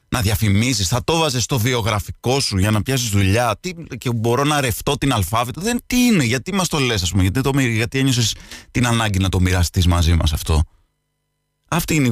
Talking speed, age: 205 wpm, 30-49